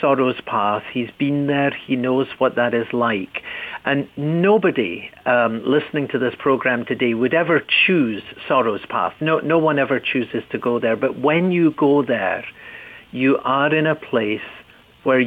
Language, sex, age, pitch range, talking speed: English, male, 50-69, 120-145 Hz, 170 wpm